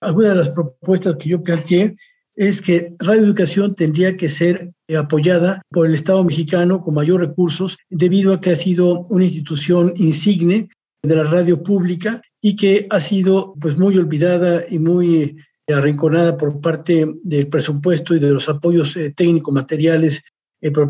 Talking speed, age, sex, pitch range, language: 160 wpm, 50-69, male, 155-185 Hz, Spanish